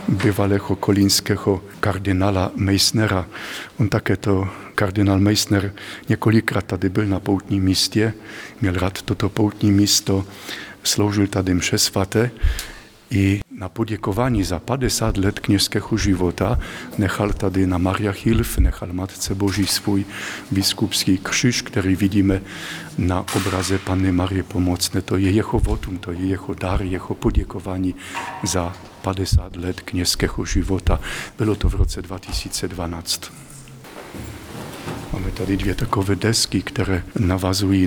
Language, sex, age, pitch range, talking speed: Czech, male, 50-69, 95-105 Hz, 120 wpm